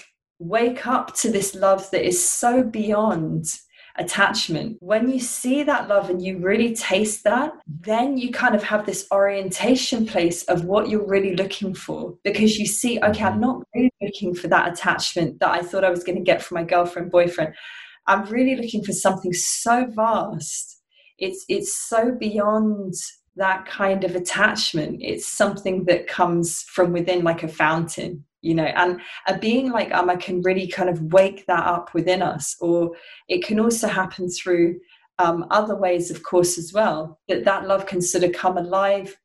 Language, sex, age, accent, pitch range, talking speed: English, female, 20-39, British, 175-210 Hz, 180 wpm